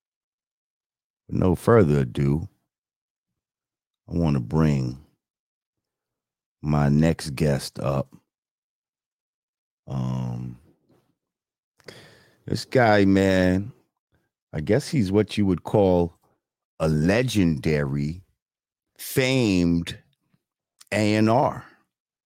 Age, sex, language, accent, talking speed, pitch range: 40-59, male, English, American, 70 wpm, 75-105 Hz